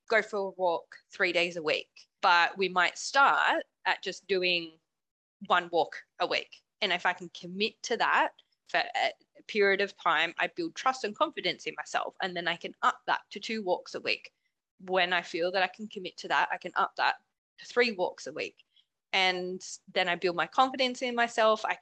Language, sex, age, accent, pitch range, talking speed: English, female, 20-39, Australian, 175-215 Hz, 210 wpm